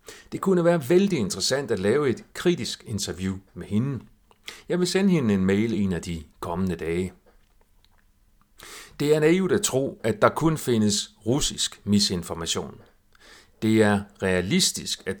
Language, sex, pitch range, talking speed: Danish, male, 95-130 Hz, 150 wpm